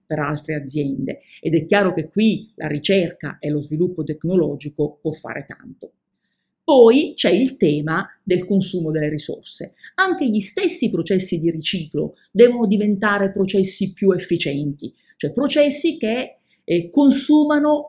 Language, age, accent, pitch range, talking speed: Italian, 40-59, native, 155-220 Hz, 140 wpm